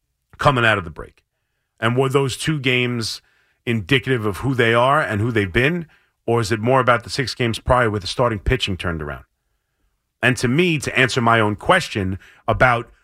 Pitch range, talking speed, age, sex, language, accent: 110-145 Hz, 200 wpm, 40-59, male, English, American